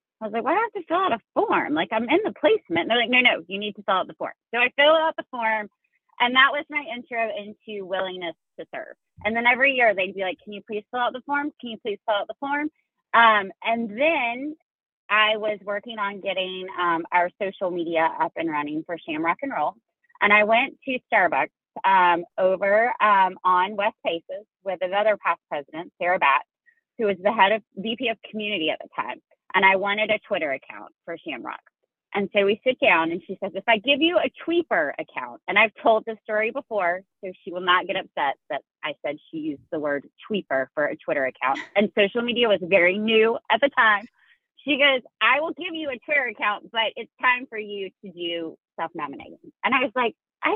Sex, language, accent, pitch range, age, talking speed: female, English, American, 195-280 Hz, 30-49, 225 wpm